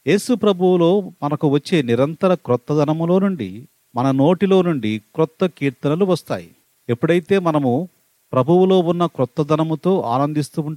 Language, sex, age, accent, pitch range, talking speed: Telugu, male, 40-59, native, 140-180 Hz, 105 wpm